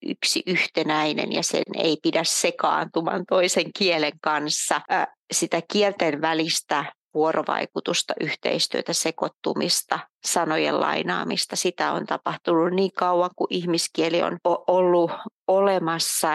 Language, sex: Finnish, female